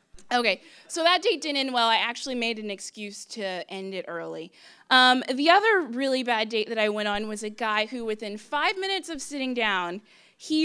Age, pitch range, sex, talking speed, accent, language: 20-39, 220-290 Hz, female, 210 wpm, American, English